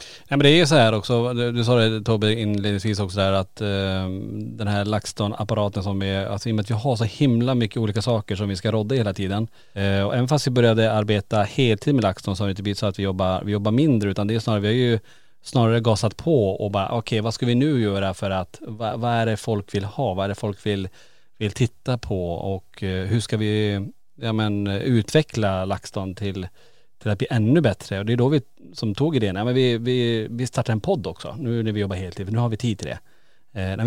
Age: 30-49